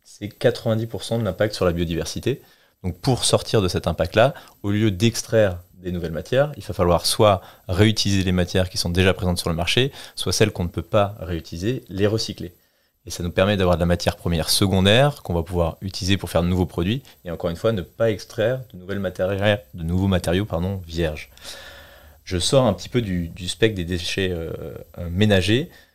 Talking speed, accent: 195 wpm, French